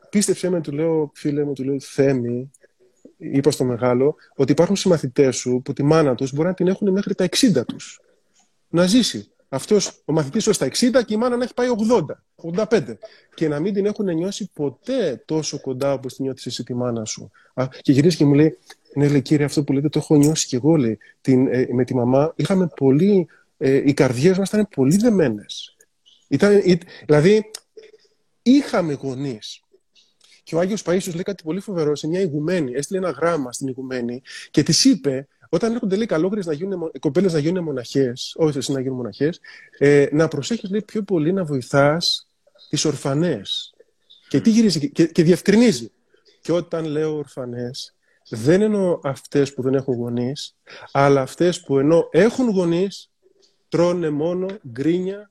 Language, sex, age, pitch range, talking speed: Greek, male, 30-49, 140-195 Hz, 180 wpm